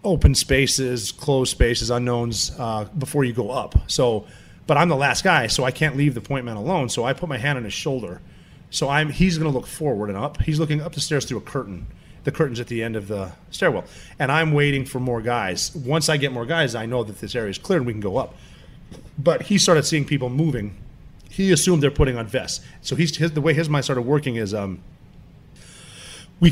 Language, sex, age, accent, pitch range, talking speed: English, male, 30-49, American, 120-155 Hz, 235 wpm